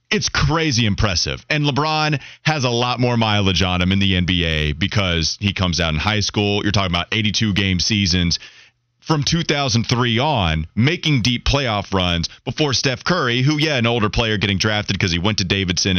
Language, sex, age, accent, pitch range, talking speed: English, male, 30-49, American, 95-135 Hz, 185 wpm